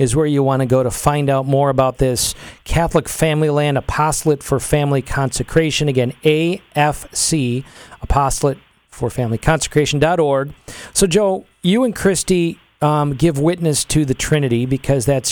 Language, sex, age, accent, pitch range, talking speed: English, male, 40-59, American, 135-160 Hz, 135 wpm